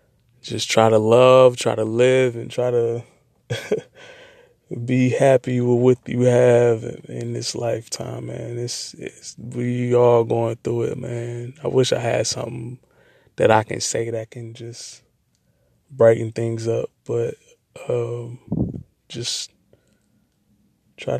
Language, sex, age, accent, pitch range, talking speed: English, male, 20-39, American, 115-130 Hz, 125 wpm